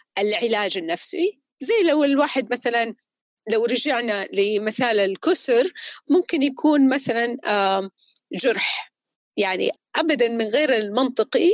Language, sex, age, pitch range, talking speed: Arabic, female, 30-49, 220-300 Hz, 100 wpm